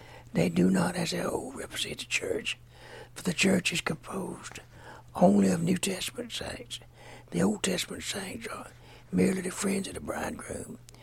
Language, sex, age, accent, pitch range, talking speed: English, male, 60-79, American, 120-190 Hz, 165 wpm